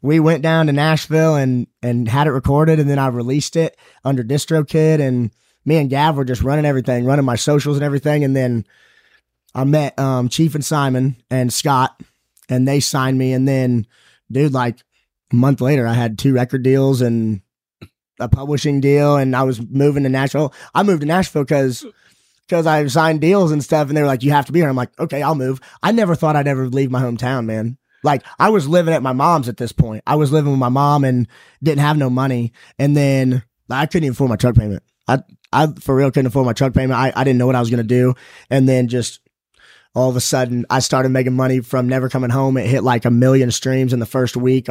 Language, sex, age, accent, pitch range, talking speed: English, male, 20-39, American, 125-145 Hz, 230 wpm